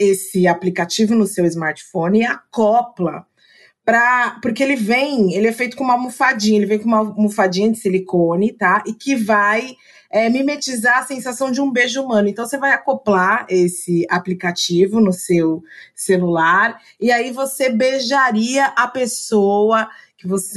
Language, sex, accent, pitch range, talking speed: Portuguese, female, Brazilian, 195-260 Hz, 145 wpm